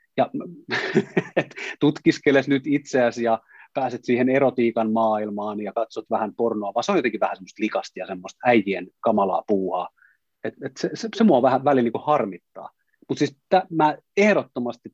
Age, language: 30-49, Finnish